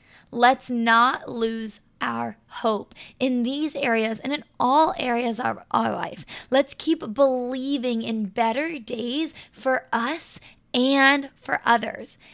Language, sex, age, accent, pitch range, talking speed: English, female, 20-39, American, 230-275 Hz, 125 wpm